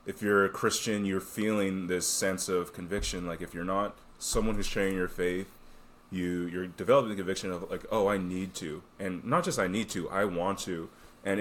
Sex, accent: male, American